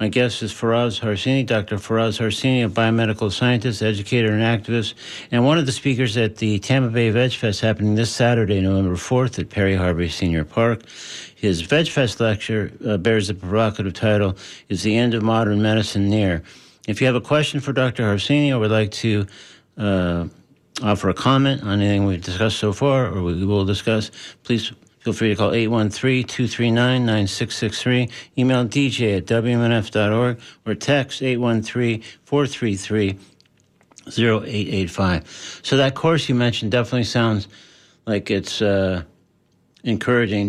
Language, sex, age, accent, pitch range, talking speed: English, male, 60-79, American, 100-120 Hz, 145 wpm